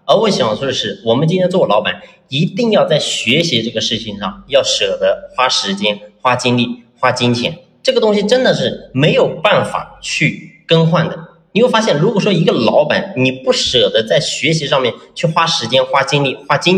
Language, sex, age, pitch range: Chinese, male, 30-49, 130-200 Hz